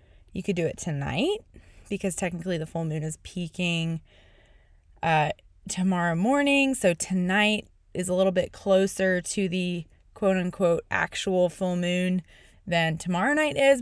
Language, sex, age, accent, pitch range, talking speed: English, female, 20-39, American, 165-215 Hz, 140 wpm